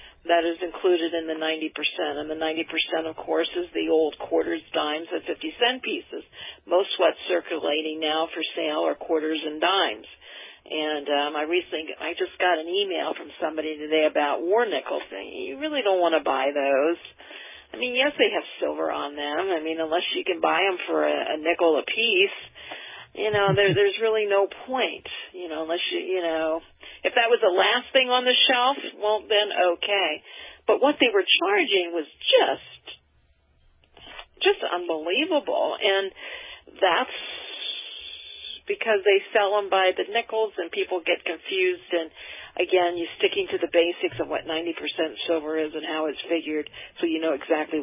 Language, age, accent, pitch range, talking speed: English, 50-69, American, 160-245 Hz, 175 wpm